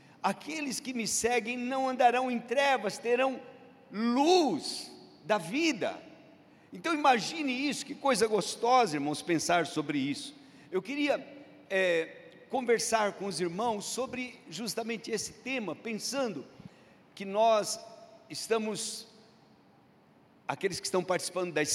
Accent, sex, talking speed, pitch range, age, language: Brazilian, male, 115 wpm, 180-255 Hz, 50-69, Portuguese